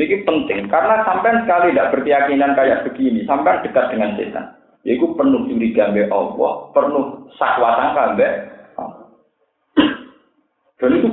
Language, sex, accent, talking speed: Indonesian, male, native, 135 wpm